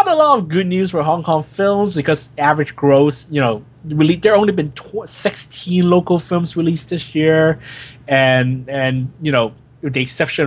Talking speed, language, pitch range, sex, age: 180 wpm, English, 115-145 Hz, male, 20-39